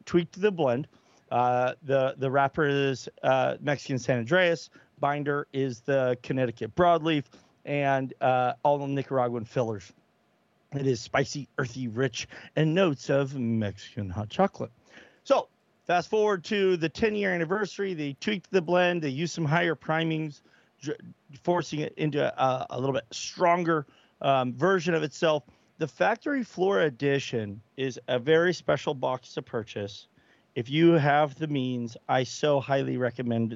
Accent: American